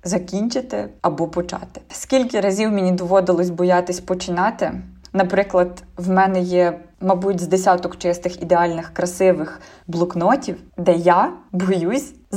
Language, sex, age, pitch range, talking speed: Ukrainian, female, 20-39, 175-190 Hz, 110 wpm